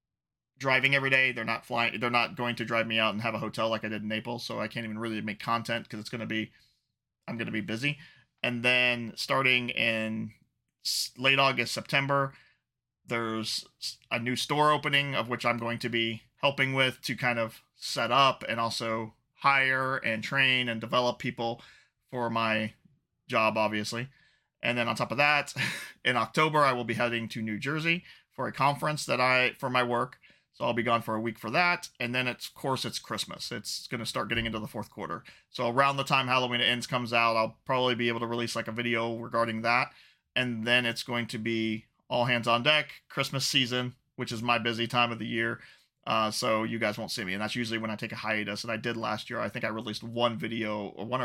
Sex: male